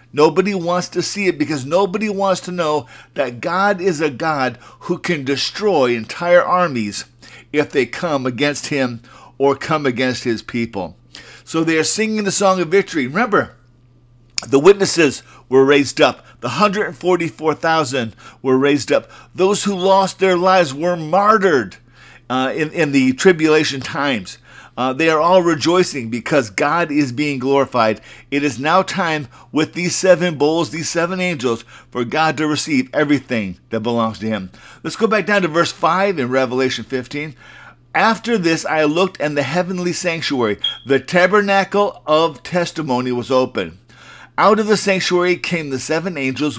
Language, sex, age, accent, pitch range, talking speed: English, male, 50-69, American, 130-180 Hz, 160 wpm